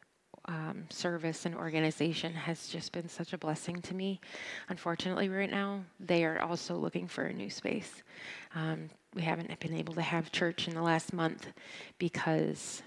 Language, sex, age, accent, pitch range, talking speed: English, female, 20-39, American, 165-190 Hz, 170 wpm